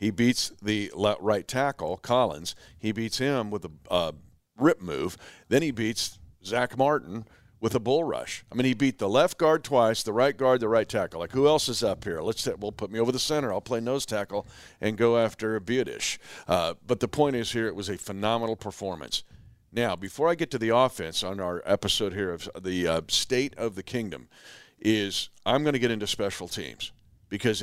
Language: English